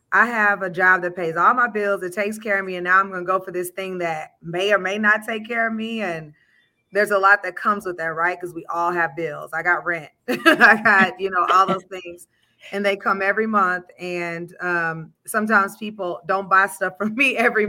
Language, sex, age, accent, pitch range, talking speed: English, female, 30-49, American, 170-210 Hz, 240 wpm